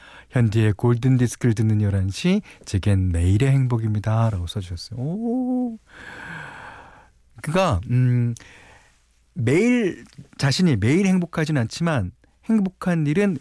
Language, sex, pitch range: Korean, male, 100-155 Hz